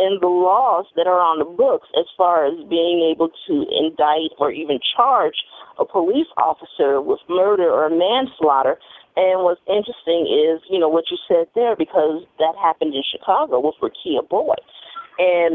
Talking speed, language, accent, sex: 170 wpm, English, American, female